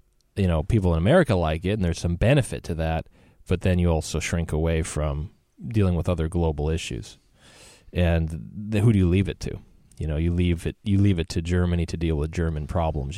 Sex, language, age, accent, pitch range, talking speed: male, English, 30-49, American, 80-95 Hz, 220 wpm